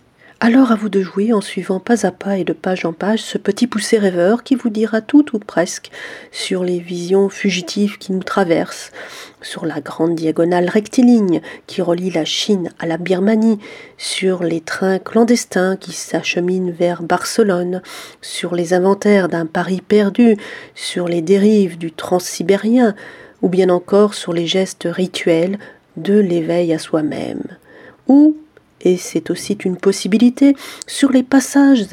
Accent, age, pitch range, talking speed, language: French, 40-59, 175-220 Hz, 155 wpm, French